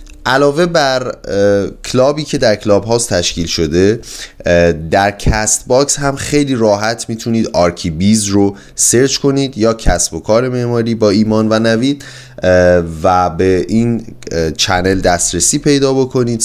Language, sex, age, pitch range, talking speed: Persian, male, 30-49, 95-125 Hz, 135 wpm